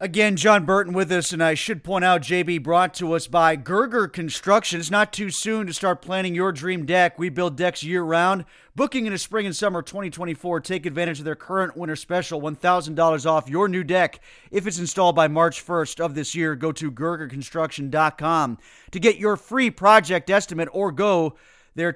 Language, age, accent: English, 30-49, American